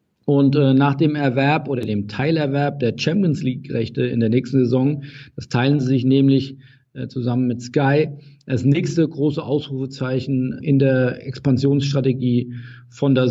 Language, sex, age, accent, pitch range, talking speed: German, male, 50-69, German, 130-155 Hz, 145 wpm